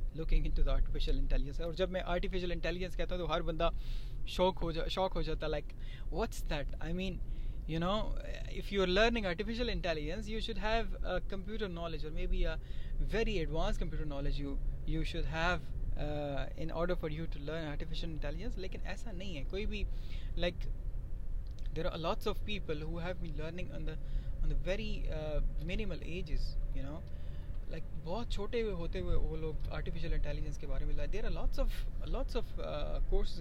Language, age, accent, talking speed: Hindi, 20-39, native, 165 wpm